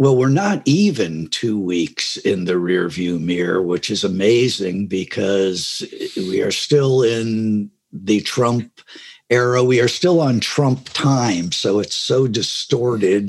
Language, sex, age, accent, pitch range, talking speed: English, male, 60-79, American, 105-130 Hz, 140 wpm